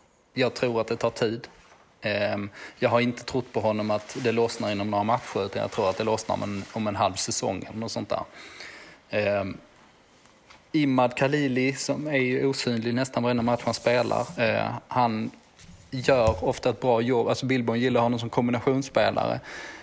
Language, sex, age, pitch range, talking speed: Swedish, male, 20-39, 110-125 Hz, 170 wpm